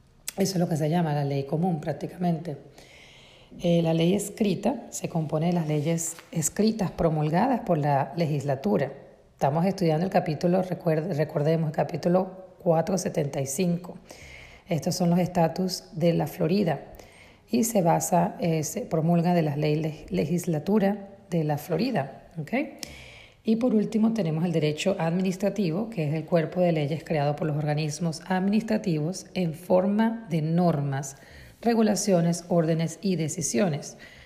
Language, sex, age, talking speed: Spanish, female, 40-59, 140 wpm